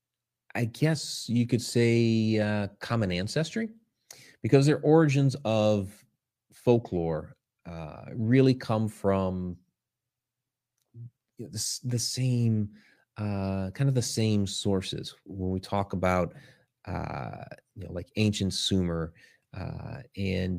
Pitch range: 90-115 Hz